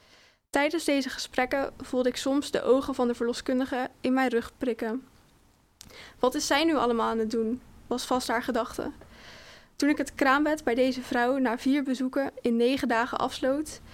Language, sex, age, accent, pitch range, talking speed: Dutch, female, 10-29, Dutch, 235-270 Hz, 175 wpm